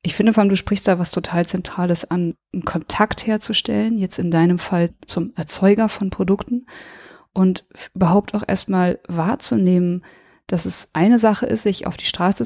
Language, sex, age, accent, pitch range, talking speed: German, female, 30-49, German, 180-210 Hz, 175 wpm